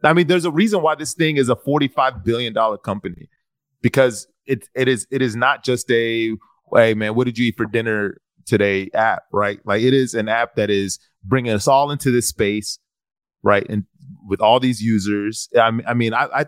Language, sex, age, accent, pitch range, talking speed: English, male, 30-49, American, 105-130 Hz, 210 wpm